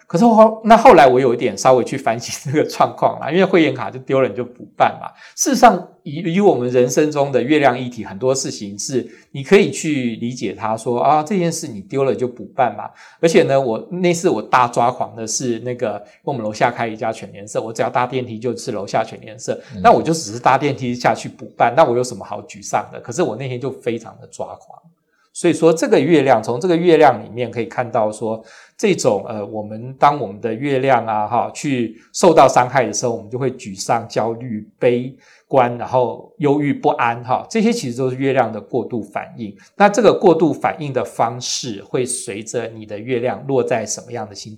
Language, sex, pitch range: Chinese, male, 115-155 Hz